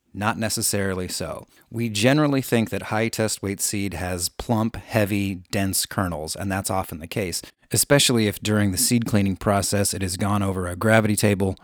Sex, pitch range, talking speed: male, 95-115 Hz, 180 wpm